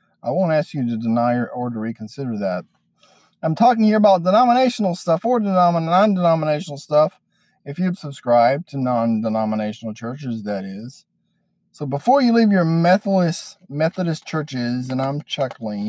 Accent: American